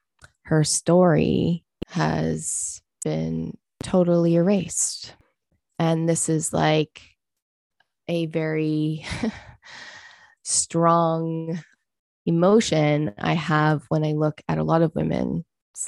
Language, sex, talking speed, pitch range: English, female, 90 wpm, 145-165 Hz